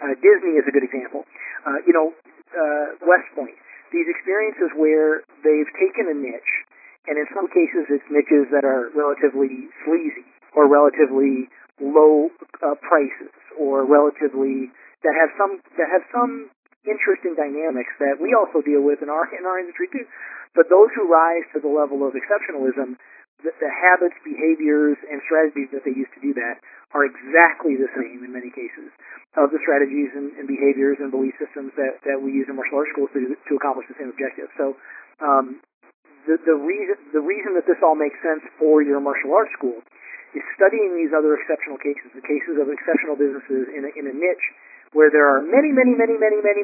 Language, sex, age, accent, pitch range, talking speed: English, male, 40-59, American, 140-185 Hz, 185 wpm